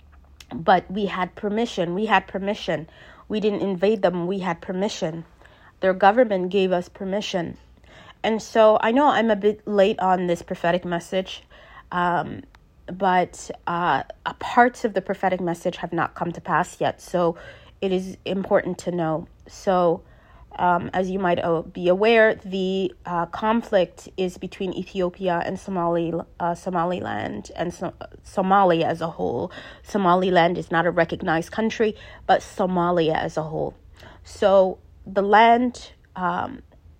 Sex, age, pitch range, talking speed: female, 30-49, 170-200 Hz, 145 wpm